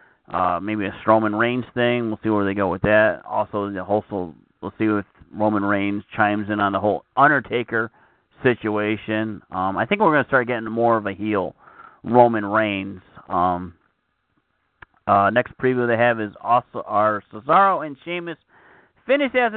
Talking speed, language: 170 wpm, English